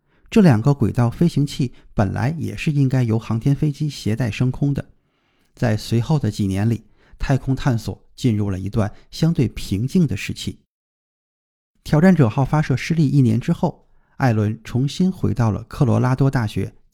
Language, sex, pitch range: Chinese, male, 105-145 Hz